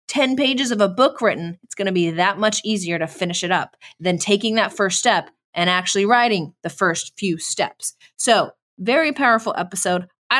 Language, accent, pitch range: English, American, 190-280 Hz